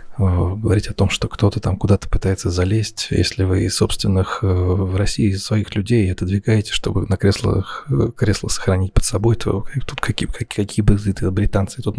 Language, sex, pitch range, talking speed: Russian, male, 95-110 Hz, 170 wpm